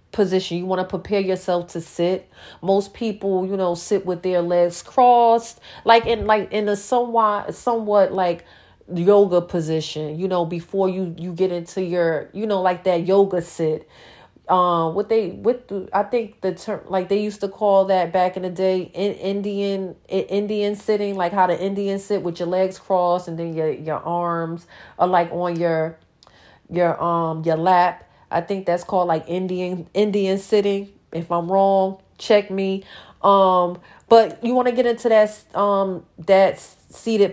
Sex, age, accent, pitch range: female, 40-59, American, 175-205 Hz